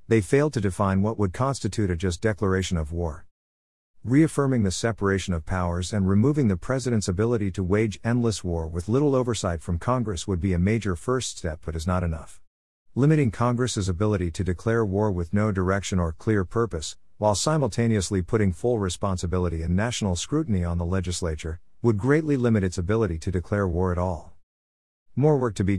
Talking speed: 180 wpm